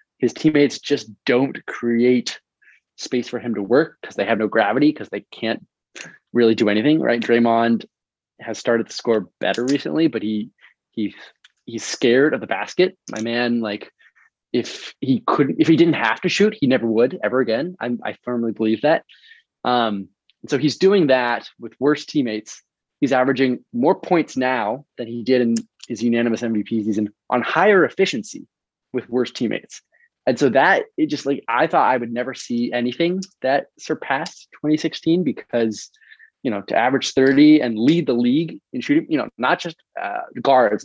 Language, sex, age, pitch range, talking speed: English, male, 20-39, 115-160 Hz, 180 wpm